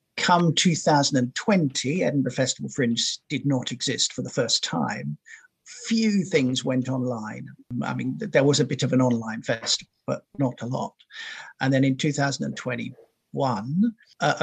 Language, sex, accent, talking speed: English, male, British, 145 wpm